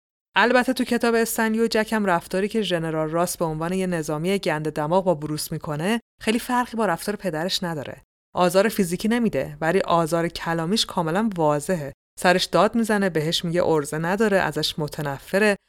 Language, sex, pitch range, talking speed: Persian, female, 165-200 Hz, 155 wpm